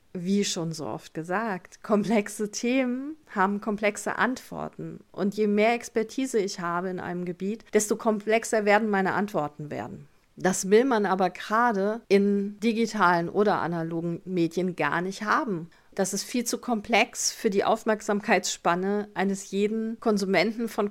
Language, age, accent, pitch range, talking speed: German, 40-59, German, 175-220 Hz, 145 wpm